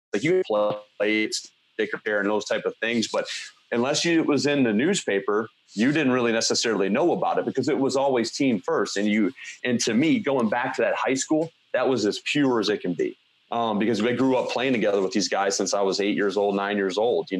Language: English